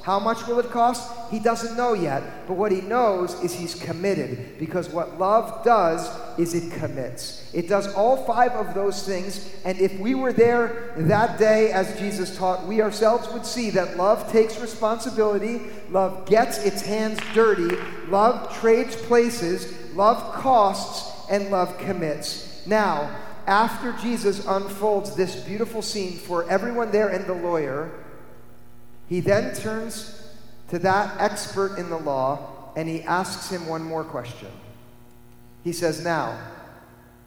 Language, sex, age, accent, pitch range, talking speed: English, male, 50-69, American, 155-215 Hz, 150 wpm